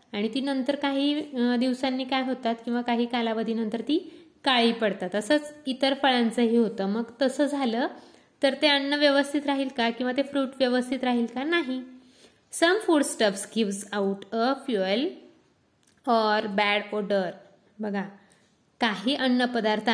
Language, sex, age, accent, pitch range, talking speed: Marathi, female, 20-39, native, 210-260 Hz, 150 wpm